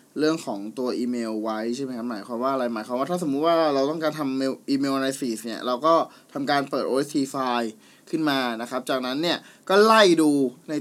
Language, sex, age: Thai, male, 20-39